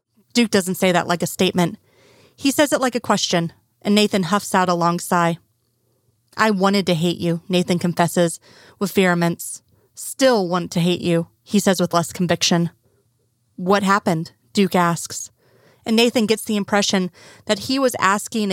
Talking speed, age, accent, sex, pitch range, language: 170 wpm, 30-49, American, female, 170-205 Hz, English